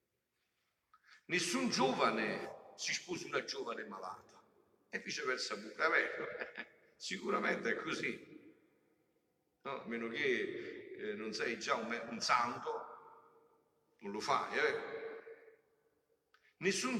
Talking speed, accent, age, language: 105 wpm, native, 50-69, Italian